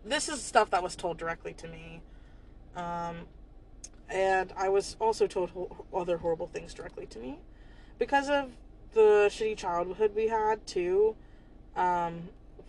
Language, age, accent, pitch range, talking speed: English, 20-39, American, 170-195 Hz, 140 wpm